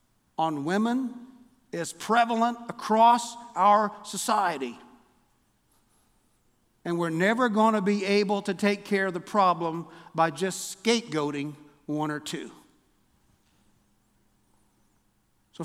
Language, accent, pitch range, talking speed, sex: English, American, 145-200 Hz, 105 wpm, male